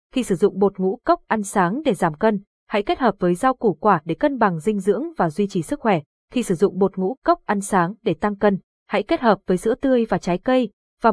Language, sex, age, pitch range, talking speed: Vietnamese, female, 20-39, 180-230 Hz, 265 wpm